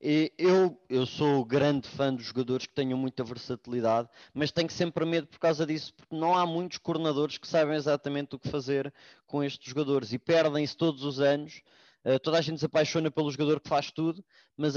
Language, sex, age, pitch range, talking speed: English, male, 20-39, 130-160 Hz, 195 wpm